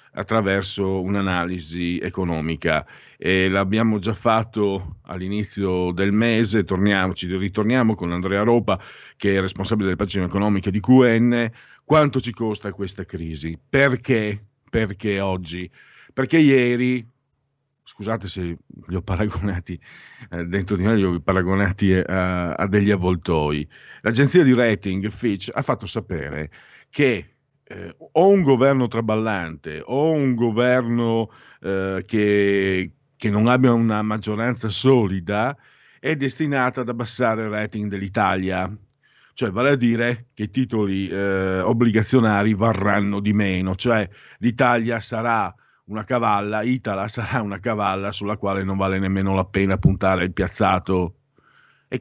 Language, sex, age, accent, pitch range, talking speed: Italian, male, 50-69, native, 95-115 Hz, 130 wpm